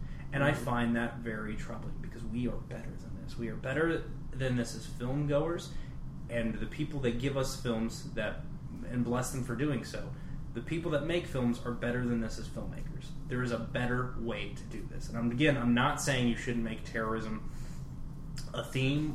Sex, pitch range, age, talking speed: male, 115-145 Hz, 20-39, 195 wpm